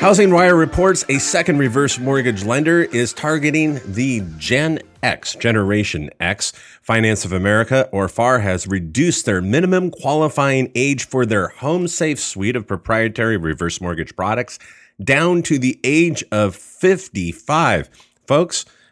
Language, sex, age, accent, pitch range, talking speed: English, male, 30-49, American, 95-130 Hz, 135 wpm